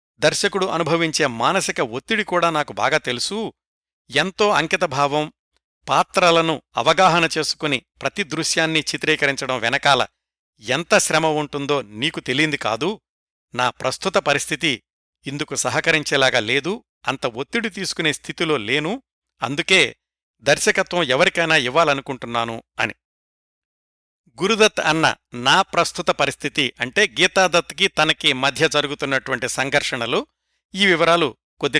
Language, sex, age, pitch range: Telugu, male, 60-79, 135-175 Hz